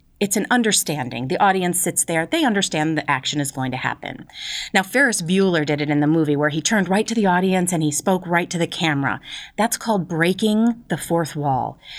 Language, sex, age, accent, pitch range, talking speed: English, female, 40-59, American, 160-215 Hz, 215 wpm